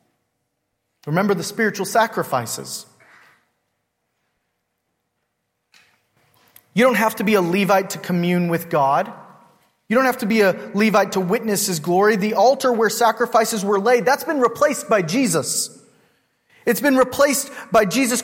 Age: 30-49